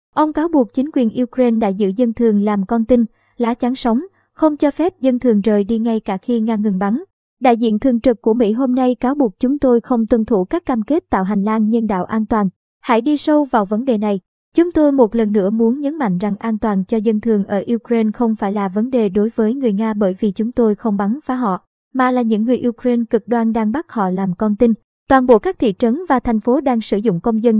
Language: Vietnamese